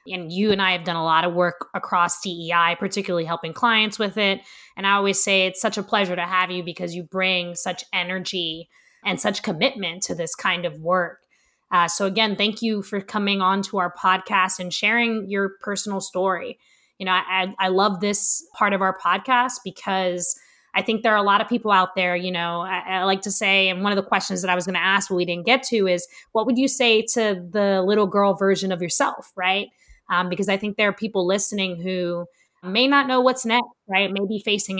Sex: female